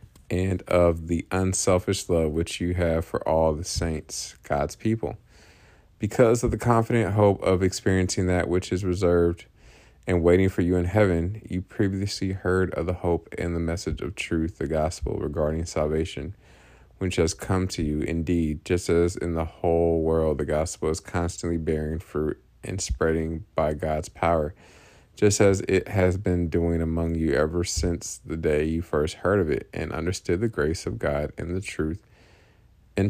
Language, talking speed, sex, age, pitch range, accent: English, 175 wpm, male, 20-39, 80-95 Hz, American